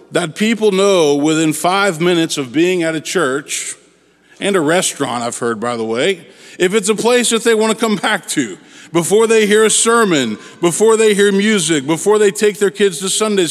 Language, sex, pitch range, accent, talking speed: English, male, 155-210 Hz, American, 200 wpm